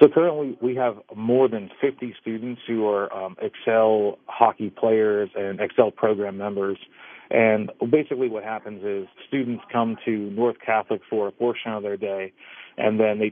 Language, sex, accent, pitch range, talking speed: English, male, American, 105-120 Hz, 165 wpm